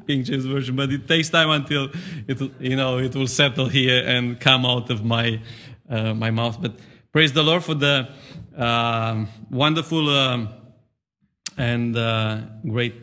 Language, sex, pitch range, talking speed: English, male, 120-155 Hz, 160 wpm